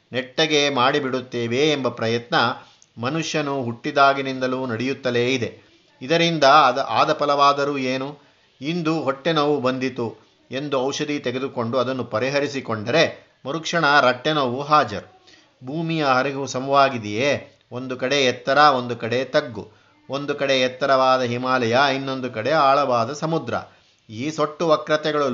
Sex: male